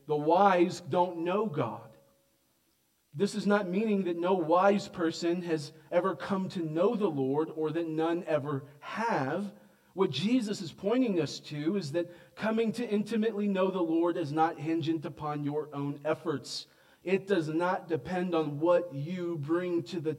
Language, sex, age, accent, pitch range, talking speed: English, male, 40-59, American, 125-175 Hz, 165 wpm